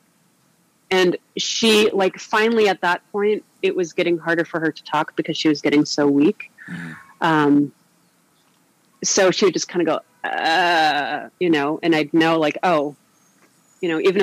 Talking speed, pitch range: 170 wpm, 155-195 Hz